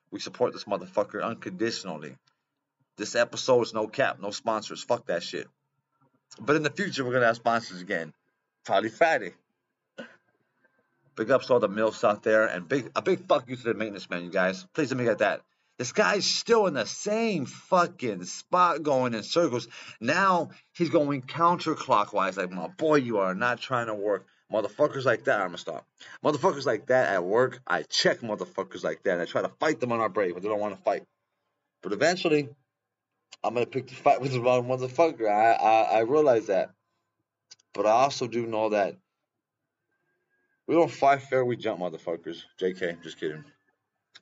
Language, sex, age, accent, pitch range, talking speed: English, male, 30-49, American, 110-150 Hz, 185 wpm